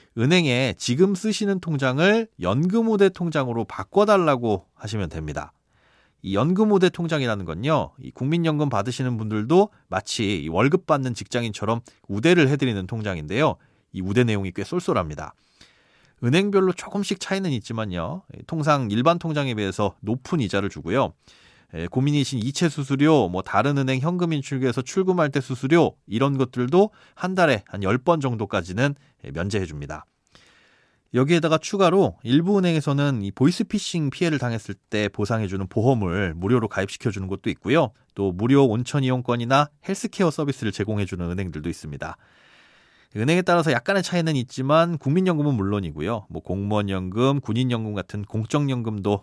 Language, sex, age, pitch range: Korean, male, 30-49, 105-165 Hz